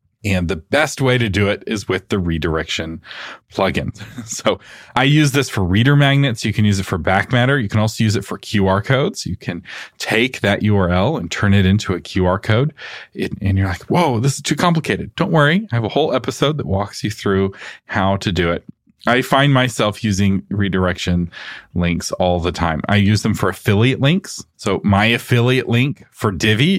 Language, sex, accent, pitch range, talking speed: English, male, American, 95-125 Hz, 200 wpm